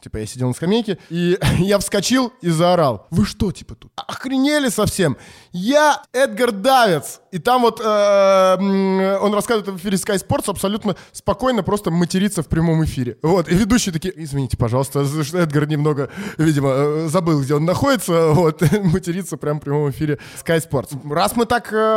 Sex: male